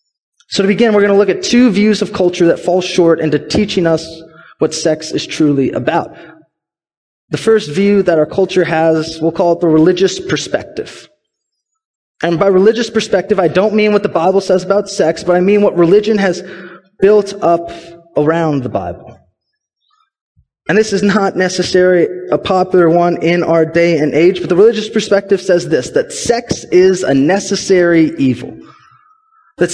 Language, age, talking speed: English, 20-39, 175 wpm